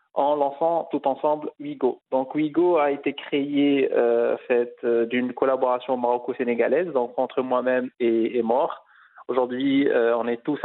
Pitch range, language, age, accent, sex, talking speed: 120-140 Hz, French, 20-39, French, male, 150 wpm